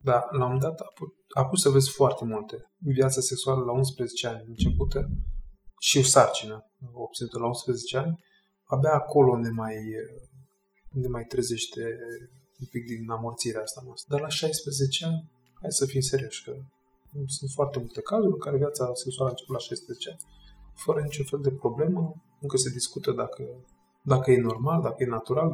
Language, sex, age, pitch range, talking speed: Romanian, male, 20-39, 125-150 Hz, 165 wpm